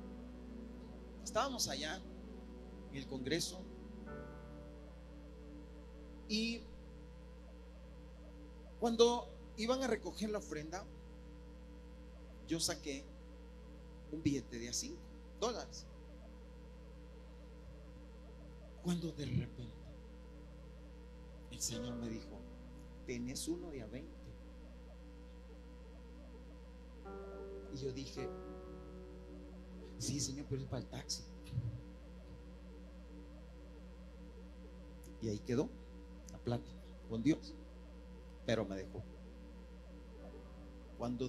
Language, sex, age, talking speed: Spanish, male, 40-59, 75 wpm